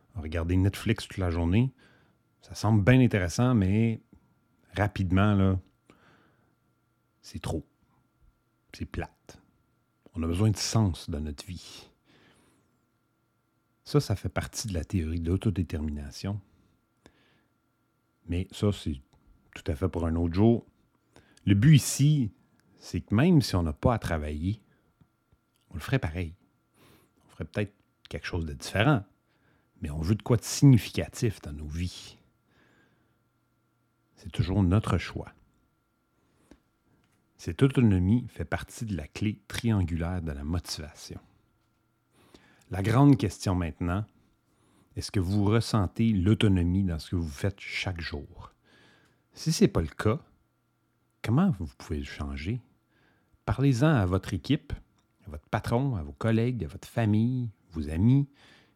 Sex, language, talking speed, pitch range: male, English, 135 wpm, 90-115 Hz